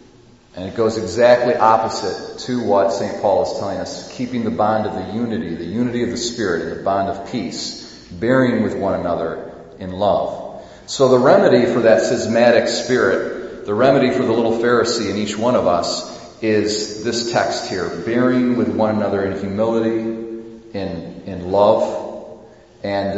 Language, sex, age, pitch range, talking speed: English, male, 40-59, 95-120 Hz, 170 wpm